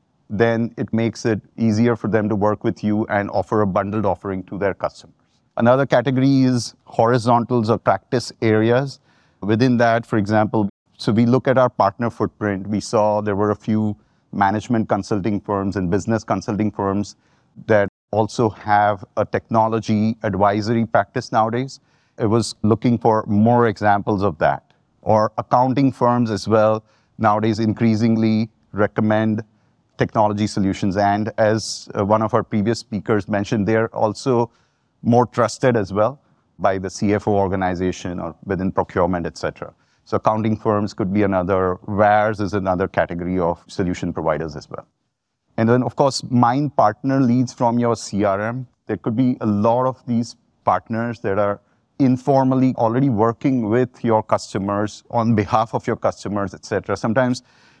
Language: English